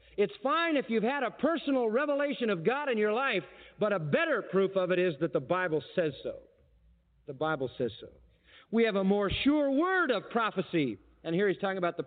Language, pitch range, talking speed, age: English, 175-235 Hz, 215 wpm, 50-69